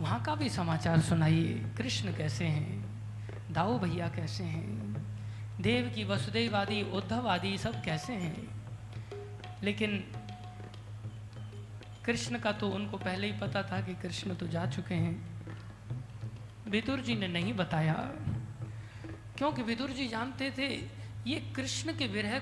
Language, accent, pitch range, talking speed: Hindi, native, 105-165 Hz, 130 wpm